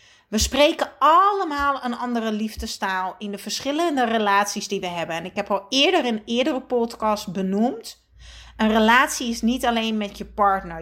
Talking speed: 165 wpm